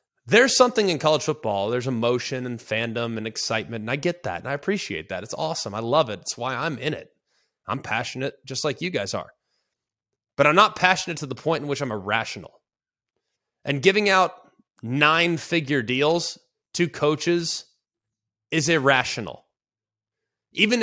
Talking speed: 165 wpm